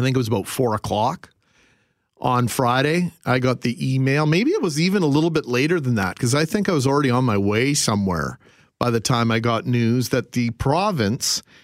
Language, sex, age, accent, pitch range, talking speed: English, male, 40-59, American, 120-155 Hz, 215 wpm